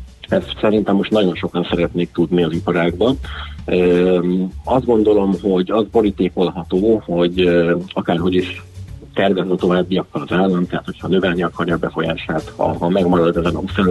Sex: male